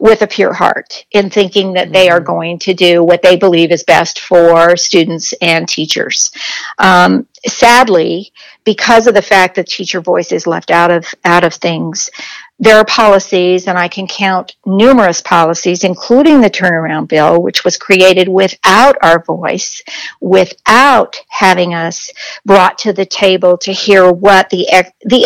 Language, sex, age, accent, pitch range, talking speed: English, female, 50-69, American, 180-215 Hz, 165 wpm